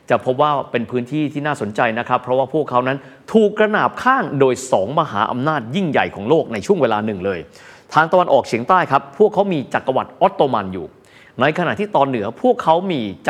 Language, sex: Thai, male